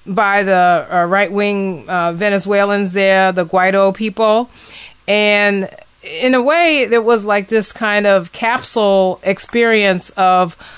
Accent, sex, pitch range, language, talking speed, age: American, female, 195-230 Hz, English, 130 wpm, 30-49